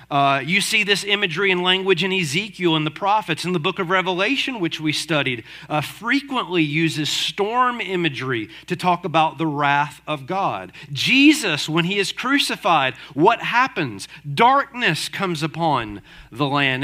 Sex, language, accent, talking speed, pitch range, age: male, English, American, 155 wpm, 150-215 Hz, 40-59